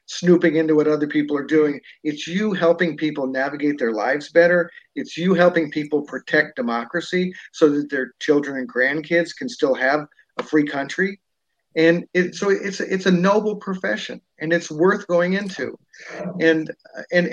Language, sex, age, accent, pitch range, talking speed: English, male, 50-69, American, 150-190 Hz, 165 wpm